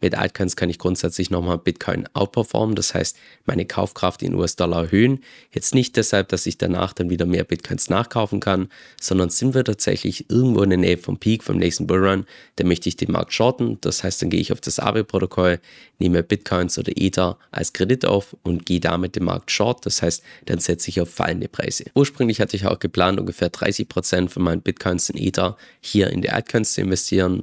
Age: 20-39